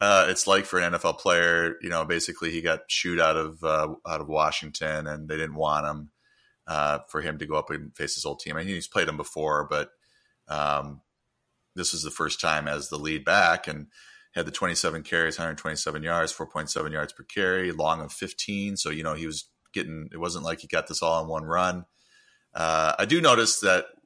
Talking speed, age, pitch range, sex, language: 220 wpm, 30-49, 75-80 Hz, male, English